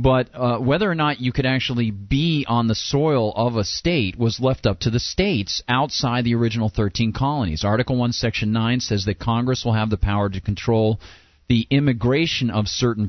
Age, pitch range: 40-59, 100-130 Hz